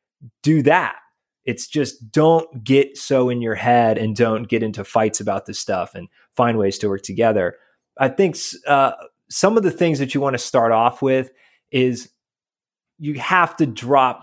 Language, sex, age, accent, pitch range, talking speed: English, male, 30-49, American, 120-150 Hz, 180 wpm